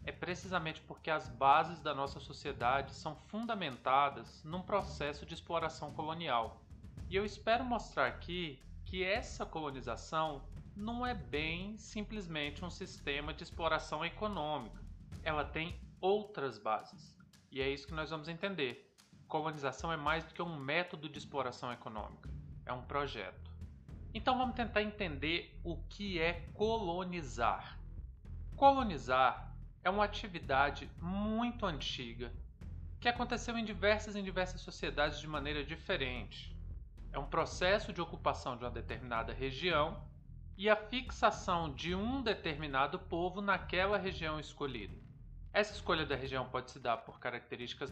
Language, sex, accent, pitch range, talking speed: Portuguese, male, Brazilian, 125-180 Hz, 135 wpm